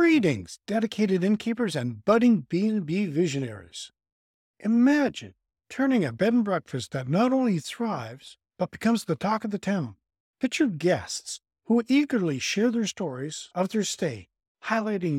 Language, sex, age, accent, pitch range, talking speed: English, male, 50-69, American, 135-215 Hz, 140 wpm